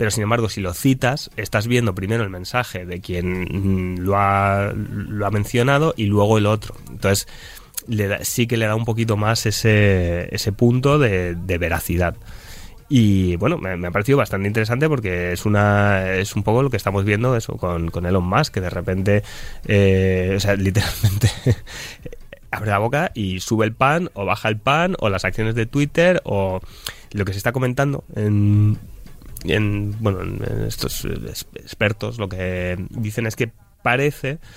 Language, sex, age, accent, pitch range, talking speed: Spanish, male, 20-39, Spanish, 95-115 Hz, 175 wpm